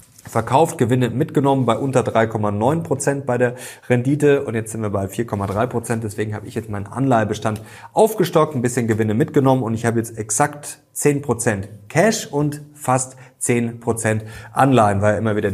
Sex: male